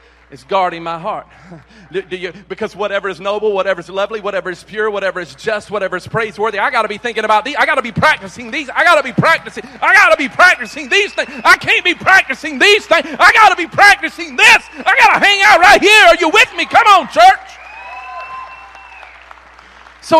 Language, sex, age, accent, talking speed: English, male, 40-59, American, 225 wpm